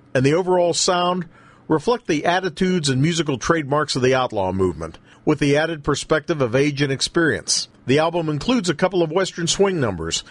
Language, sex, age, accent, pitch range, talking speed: English, male, 50-69, American, 135-170 Hz, 180 wpm